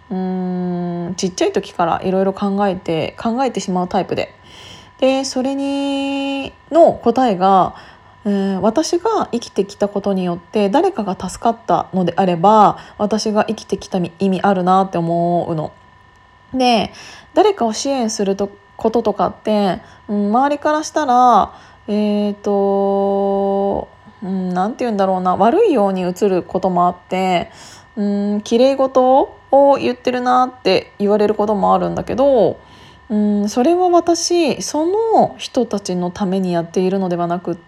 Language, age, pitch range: Japanese, 20-39, 190-265 Hz